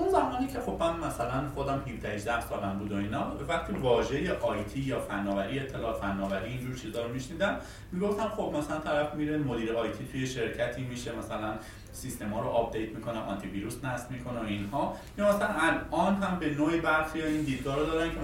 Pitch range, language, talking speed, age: 120-165 Hz, Persian, 185 wpm, 30-49